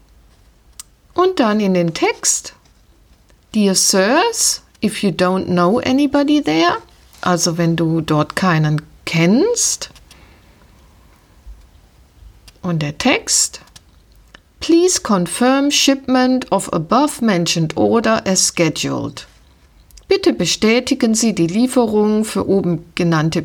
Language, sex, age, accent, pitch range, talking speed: German, female, 50-69, German, 155-245 Hz, 95 wpm